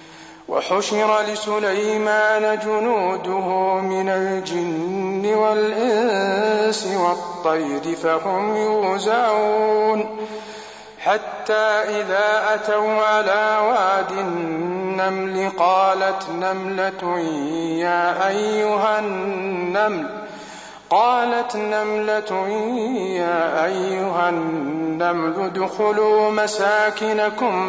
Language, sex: Arabic, male